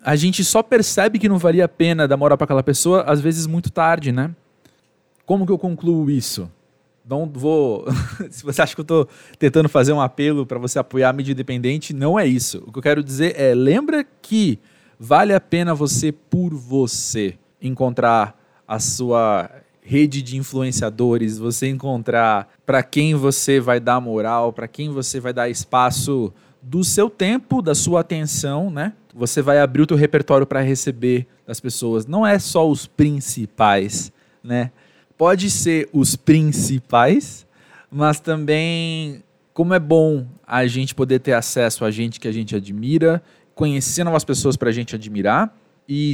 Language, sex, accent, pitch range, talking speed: Portuguese, male, Brazilian, 125-155 Hz, 170 wpm